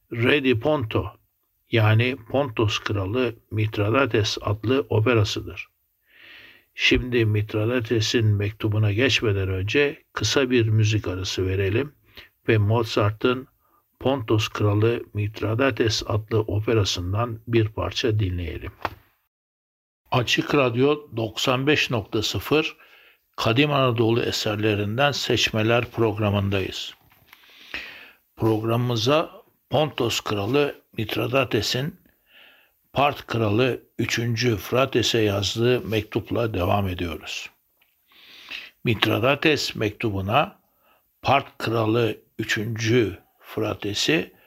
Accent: native